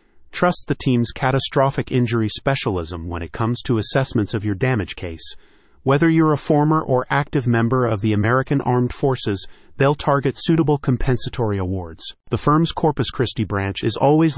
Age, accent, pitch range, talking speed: 40-59, American, 110-135 Hz, 165 wpm